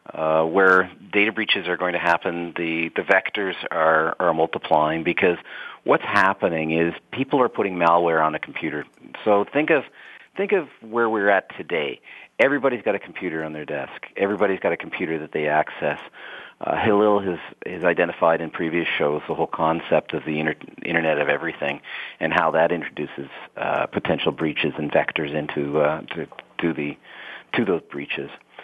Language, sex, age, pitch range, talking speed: English, male, 40-59, 80-100 Hz, 170 wpm